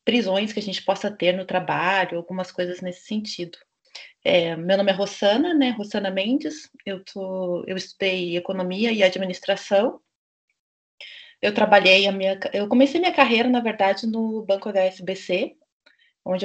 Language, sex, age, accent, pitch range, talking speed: Portuguese, female, 20-39, Brazilian, 190-245 Hz, 150 wpm